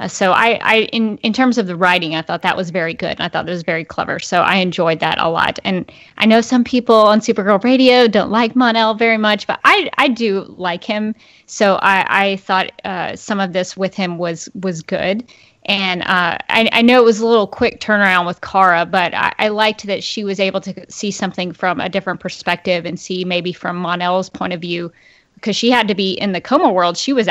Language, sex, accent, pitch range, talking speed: English, female, American, 185-235 Hz, 235 wpm